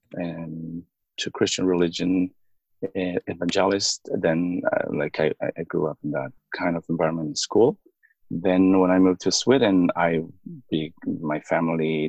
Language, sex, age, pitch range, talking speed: English, male, 30-49, 85-105 Hz, 150 wpm